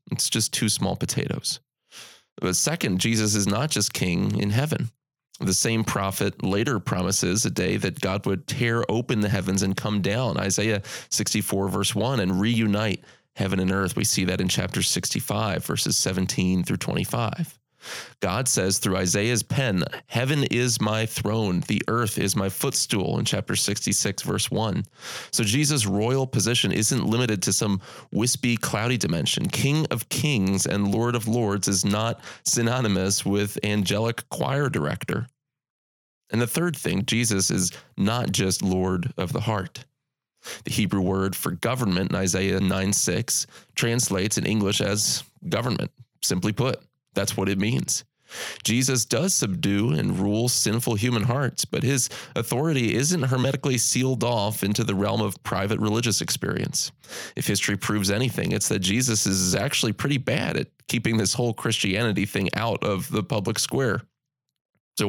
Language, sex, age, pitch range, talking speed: English, male, 30-49, 100-125 Hz, 160 wpm